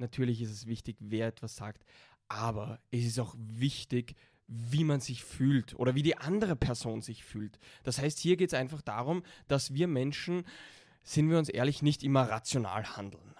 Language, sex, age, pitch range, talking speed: German, male, 10-29, 125-175 Hz, 185 wpm